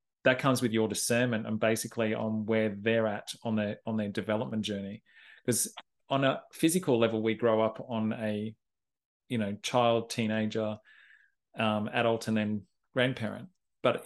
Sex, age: male, 30-49